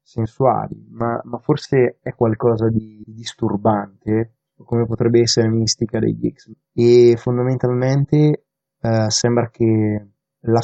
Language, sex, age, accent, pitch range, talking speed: Italian, male, 20-39, native, 110-125 Hz, 120 wpm